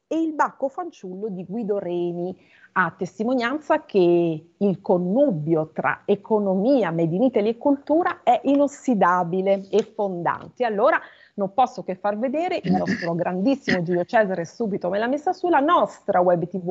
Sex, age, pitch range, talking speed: female, 40-59, 185-255 Hz, 145 wpm